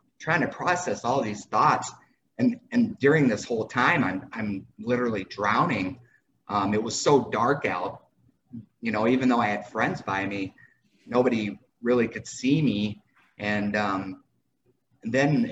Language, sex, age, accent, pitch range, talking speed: English, male, 30-49, American, 100-120 Hz, 150 wpm